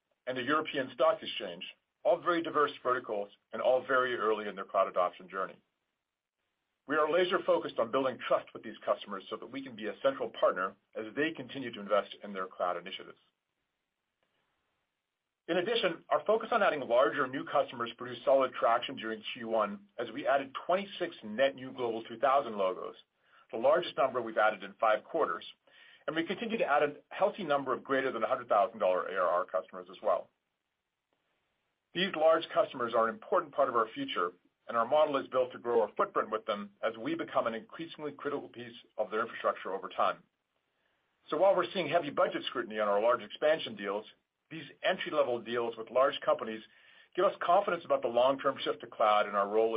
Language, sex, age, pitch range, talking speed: English, male, 40-59, 110-155 Hz, 190 wpm